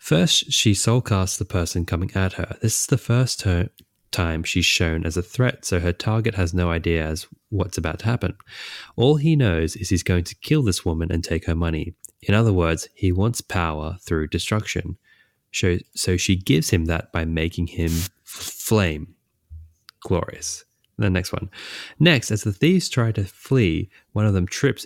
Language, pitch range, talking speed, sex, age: English, 85-110 Hz, 185 wpm, male, 20-39